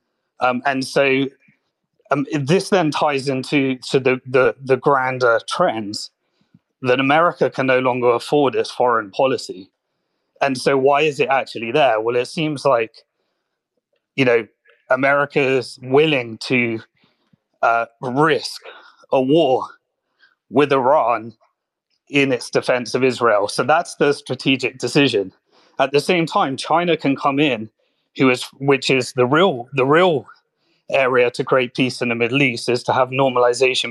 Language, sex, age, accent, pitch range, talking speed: English, male, 30-49, British, 125-150 Hz, 145 wpm